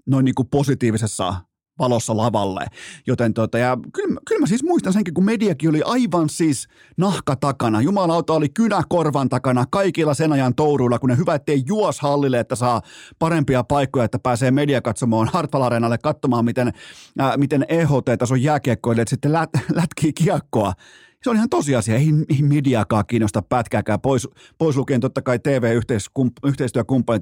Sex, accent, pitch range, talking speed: male, native, 115-150 Hz, 155 wpm